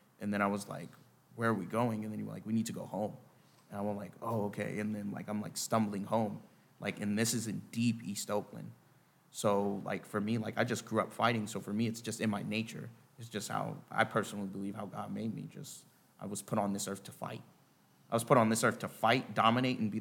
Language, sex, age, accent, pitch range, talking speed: English, male, 20-39, American, 100-115 Hz, 265 wpm